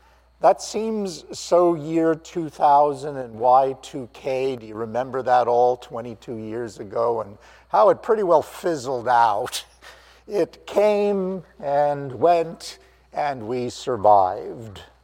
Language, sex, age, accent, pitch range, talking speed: English, male, 50-69, American, 125-150 Hz, 115 wpm